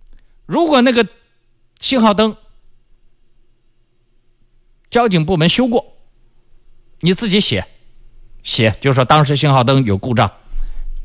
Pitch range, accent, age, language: 115-160 Hz, native, 50-69, Chinese